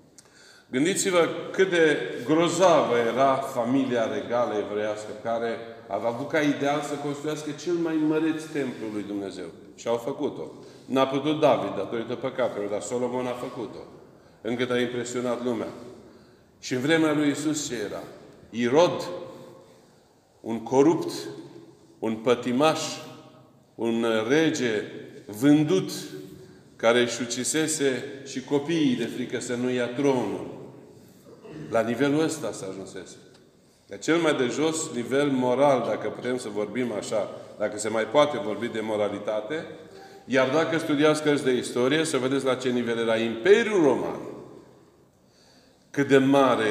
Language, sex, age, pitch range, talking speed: Romanian, male, 40-59, 115-145 Hz, 135 wpm